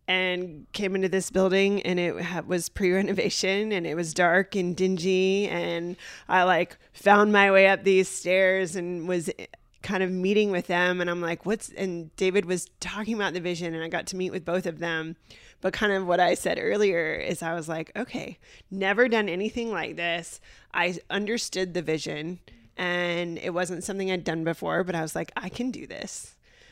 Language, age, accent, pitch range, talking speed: English, 20-39, American, 175-195 Hz, 195 wpm